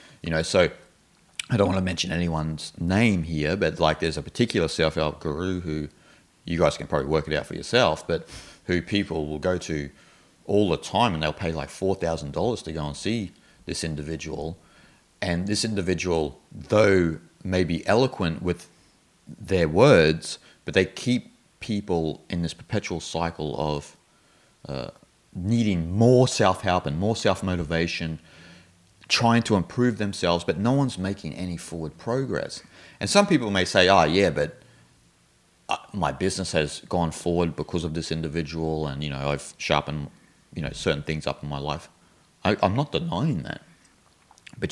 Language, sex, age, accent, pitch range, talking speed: English, male, 30-49, Australian, 75-95 Hz, 160 wpm